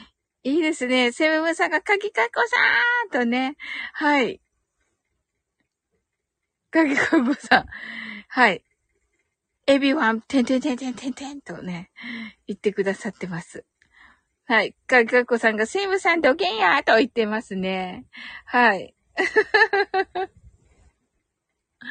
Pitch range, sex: 205-340 Hz, female